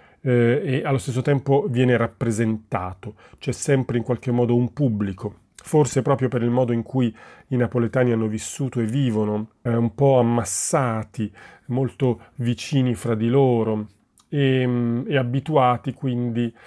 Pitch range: 115-135 Hz